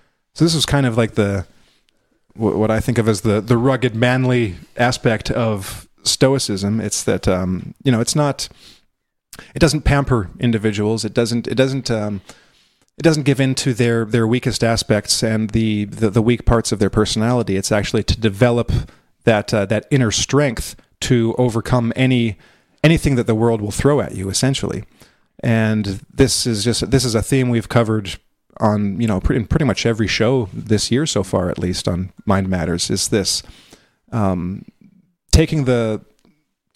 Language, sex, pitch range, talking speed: English, male, 105-125 Hz, 175 wpm